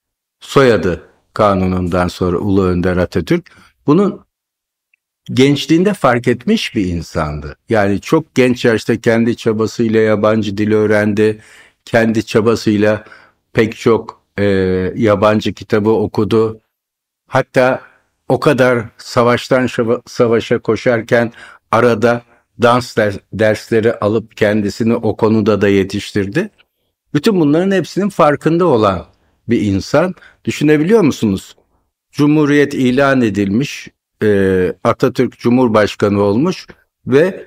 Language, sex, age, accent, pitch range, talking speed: Turkish, male, 60-79, native, 100-125 Hz, 100 wpm